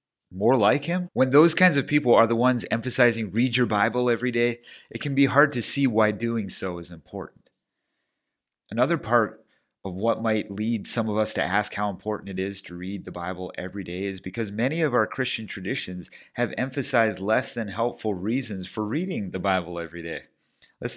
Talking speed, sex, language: 195 wpm, male, English